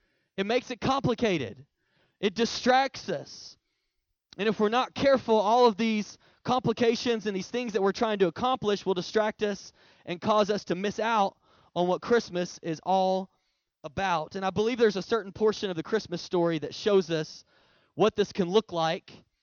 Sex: male